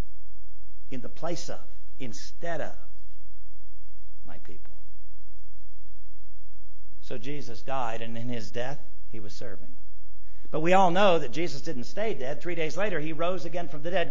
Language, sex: English, male